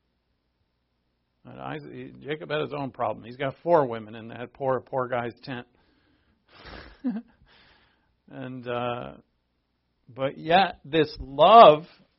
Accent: American